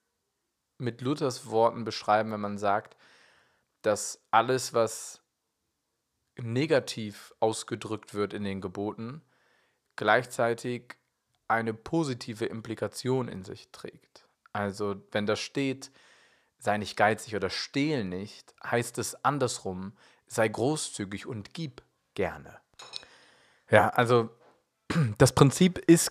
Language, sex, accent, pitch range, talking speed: German, male, German, 110-135 Hz, 105 wpm